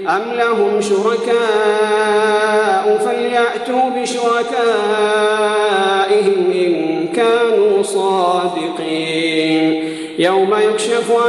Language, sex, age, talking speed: Arabic, male, 40-59, 55 wpm